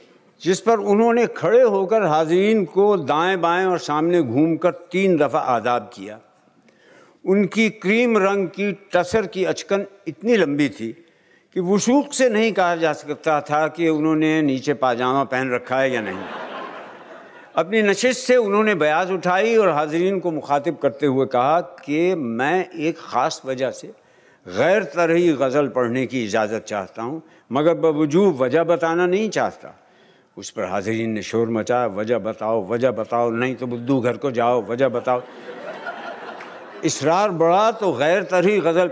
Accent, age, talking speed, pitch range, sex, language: native, 60-79, 155 wpm, 130-190 Hz, male, Hindi